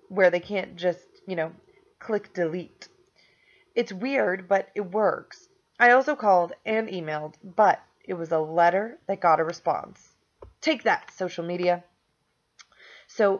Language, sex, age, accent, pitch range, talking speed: English, female, 30-49, American, 175-235 Hz, 145 wpm